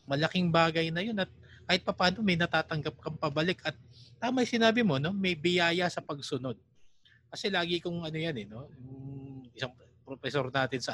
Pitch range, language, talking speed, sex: 125-180 Hz, English, 175 wpm, male